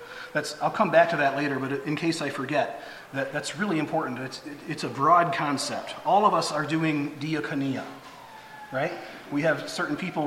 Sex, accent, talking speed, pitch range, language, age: male, American, 195 wpm, 145-205 Hz, English, 40-59